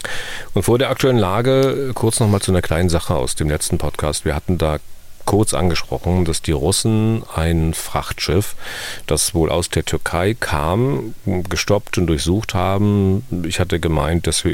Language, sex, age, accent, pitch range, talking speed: German, male, 40-59, German, 75-95 Hz, 165 wpm